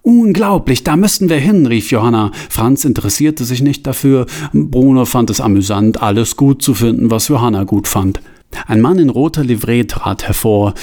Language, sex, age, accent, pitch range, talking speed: German, male, 40-59, German, 125-185 Hz, 170 wpm